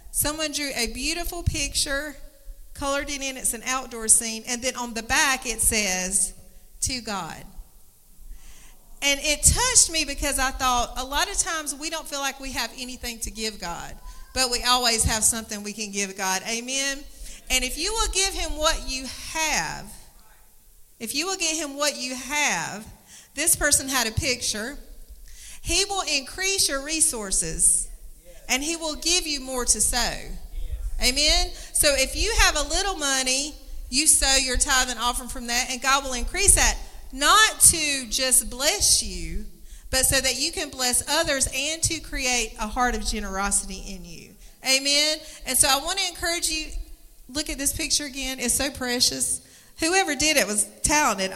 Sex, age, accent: female, 40-59, American